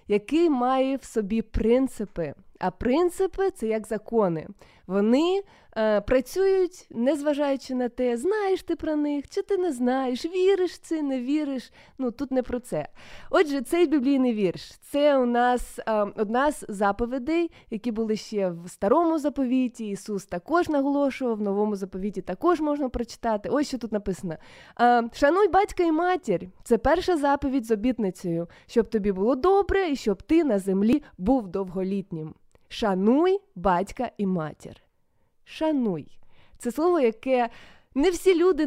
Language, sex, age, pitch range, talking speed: Ukrainian, female, 20-39, 205-300 Hz, 145 wpm